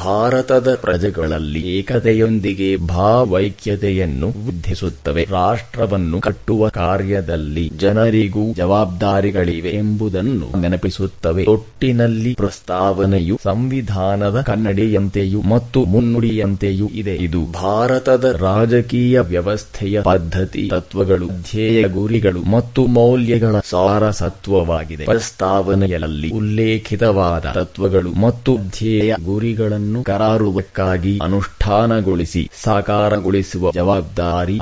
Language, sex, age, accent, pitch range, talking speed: English, male, 30-49, Indian, 90-110 Hz, 75 wpm